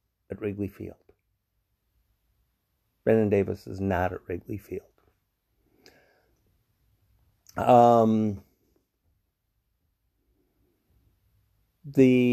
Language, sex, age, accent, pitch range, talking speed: English, male, 50-69, American, 100-130 Hz, 60 wpm